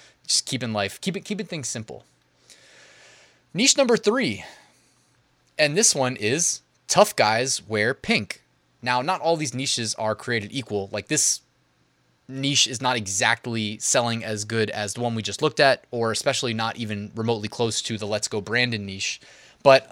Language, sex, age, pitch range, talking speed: English, male, 20-39, 110-140 Hz, 165 wpm